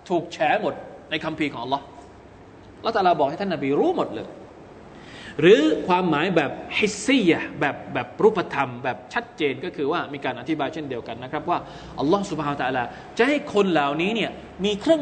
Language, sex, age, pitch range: Thai, male, 20-39, 135-180 Hz